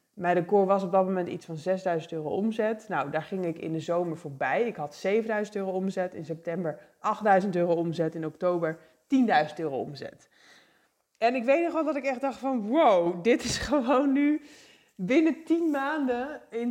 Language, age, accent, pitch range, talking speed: English, 20-39, Dutch, 170-225 Hz, 190 wpm